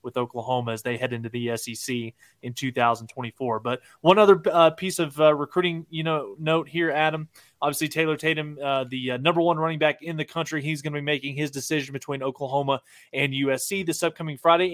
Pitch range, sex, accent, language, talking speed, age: 135-165 Hz, male, American, English, 205 wpm, 20-39